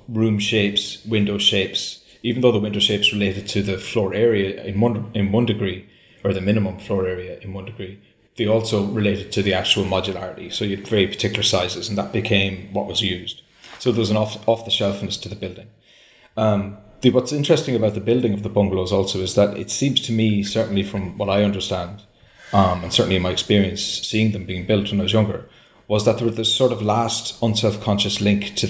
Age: 30-49